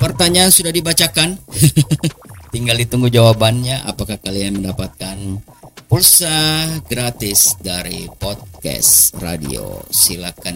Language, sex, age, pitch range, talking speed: Indonesian, male, 40-59, 90-120 Hz, 85 wpm